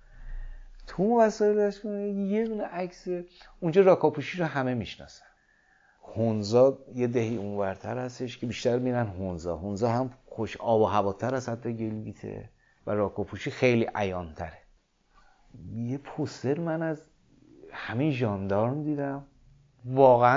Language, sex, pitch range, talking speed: Persian, male, 110-165 Hz, 120 wpm